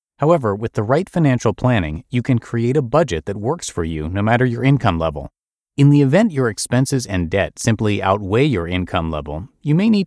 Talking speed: 210 wpm